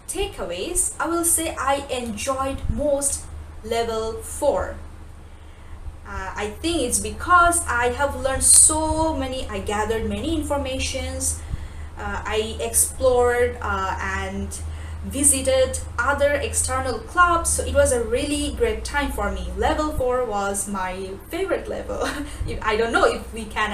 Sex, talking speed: female, 130 wpm